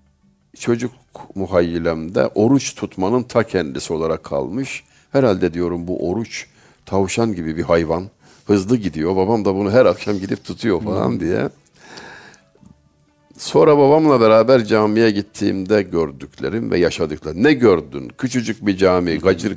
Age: 60-79